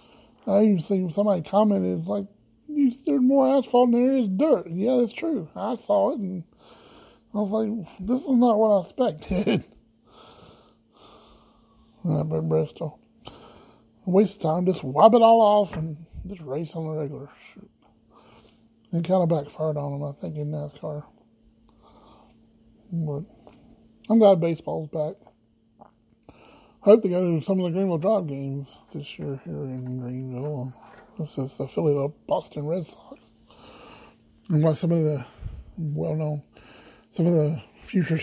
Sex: male